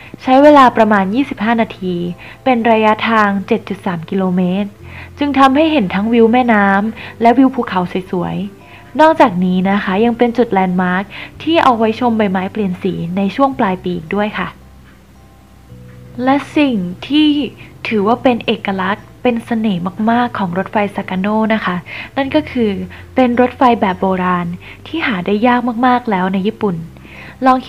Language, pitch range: Thai, 185-245 Hz